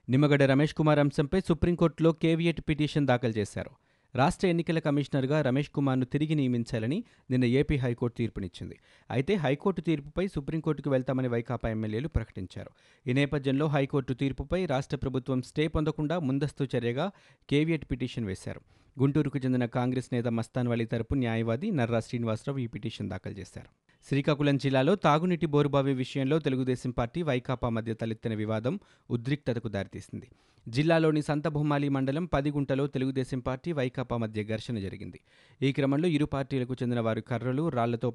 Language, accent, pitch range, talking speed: Telugu, native, 115-145 Hz, 135 wpm